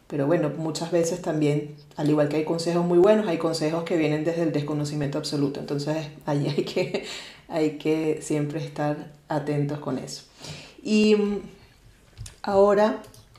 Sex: female